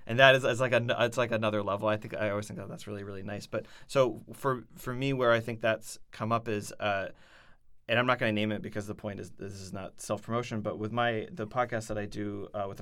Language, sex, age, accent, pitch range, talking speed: English, male, 20-39, American, 100-115 Hz, 265 wpm